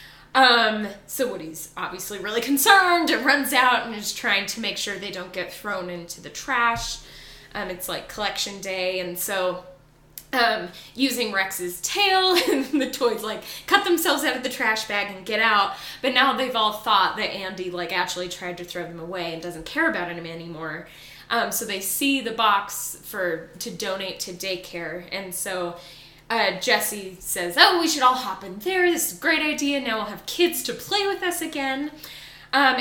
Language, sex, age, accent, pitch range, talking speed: English, female, 10-29, American, 185-275 Hz, 190 wpm